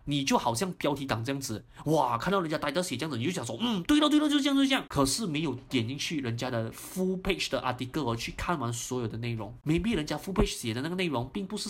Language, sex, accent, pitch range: Chinese, male, native, 115-165 Hz